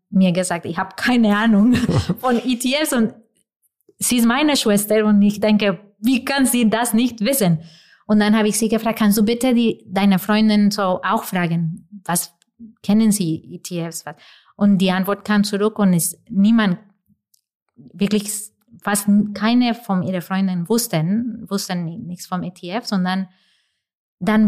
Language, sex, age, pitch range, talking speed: German, female, 20-39, 180-215 Hz, 150 wpm